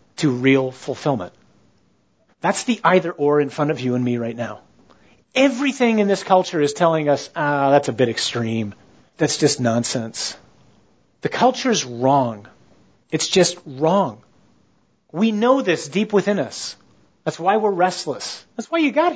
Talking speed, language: 160 wpm, English